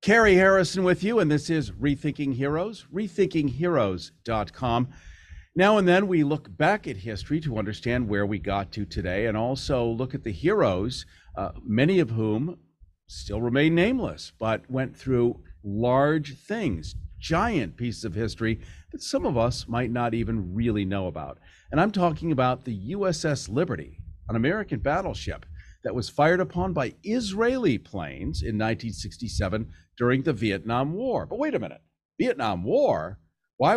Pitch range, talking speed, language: 105-160 Hz, 155 wpm, English